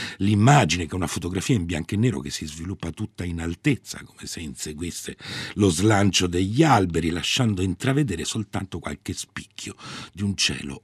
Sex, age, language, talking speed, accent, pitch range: male, 60-79, Italian, 165 wpm, native, 80-110 Hz